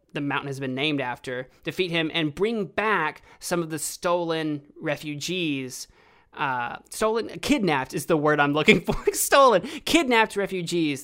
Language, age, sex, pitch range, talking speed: English, 20-39, male, 140-200 Hz, 150 wpm